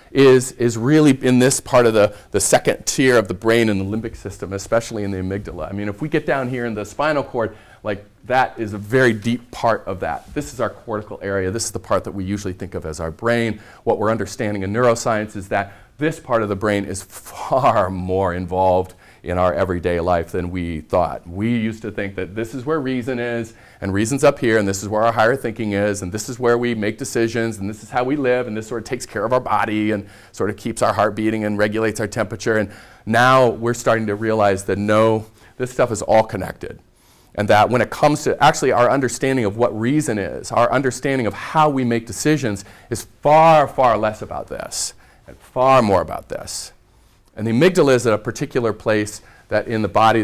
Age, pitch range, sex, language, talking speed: 40-59, 100-125 Hz, male, English, 230 wpm